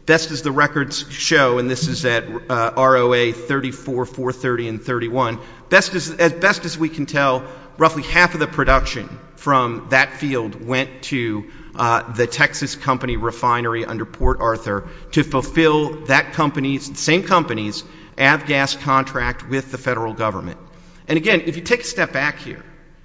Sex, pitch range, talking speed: male, 125-160 Hz, 165 wpm